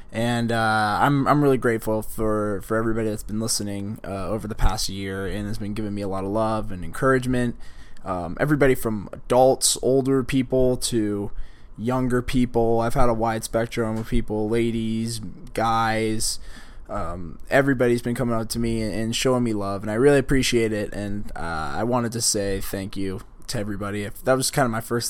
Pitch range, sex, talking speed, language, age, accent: 110-130 Hz, male, 190 wpm, English, 20-39, American